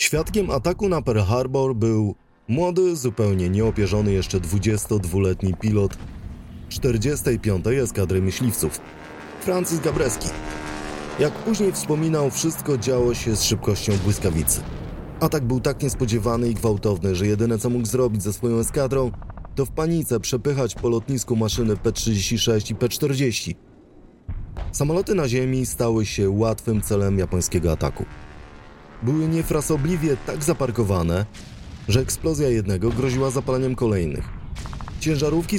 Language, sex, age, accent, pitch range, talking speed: English, male, 30-49, Polish, 100-135 Hz, 120 wpm